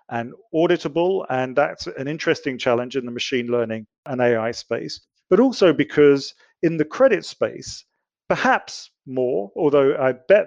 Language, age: English, 40-59